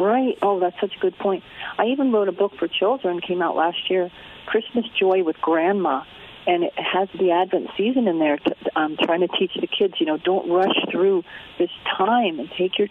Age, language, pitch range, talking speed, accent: 40-59, English, 170-235 Hz, 215 wpm, American